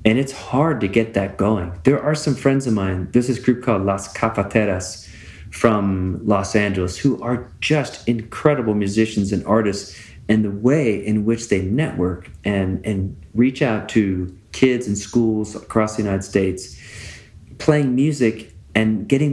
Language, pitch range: English, 95-115 Hz